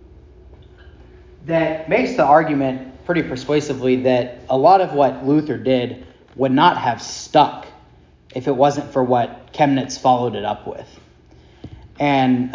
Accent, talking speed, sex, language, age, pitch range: American, 135 wpm, male, English, 30-49, 110-145 Hz